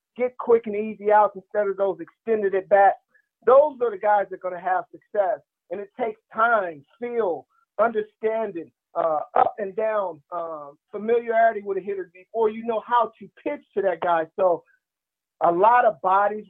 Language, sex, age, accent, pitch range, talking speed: English, male, 40-59, American, 185-225 Hz, 180 wpm